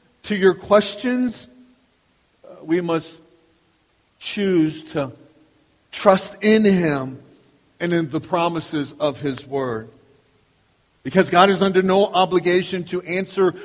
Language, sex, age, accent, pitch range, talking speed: English, male, 40-59, American, 145-185 Hz, 115 wpm